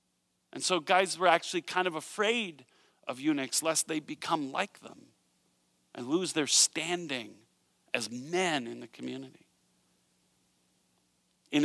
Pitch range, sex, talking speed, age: 115-155 Hz, male, 130 wpm, 40-59